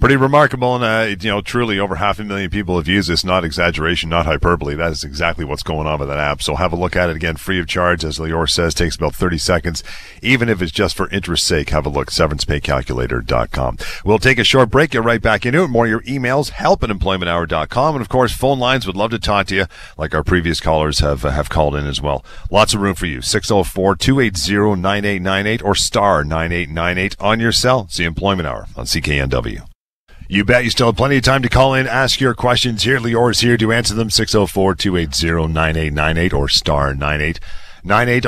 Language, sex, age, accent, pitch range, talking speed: English, male, 40-59, American, 85-115 Hz, 215 wpm